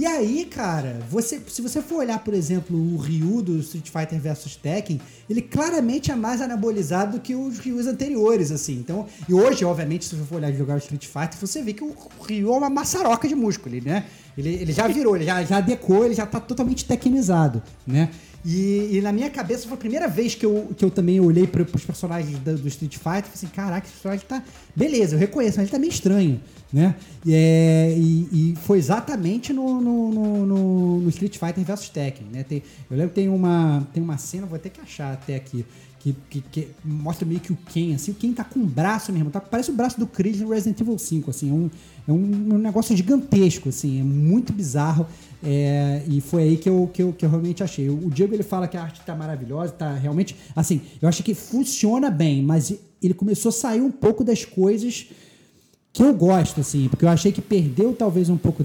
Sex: male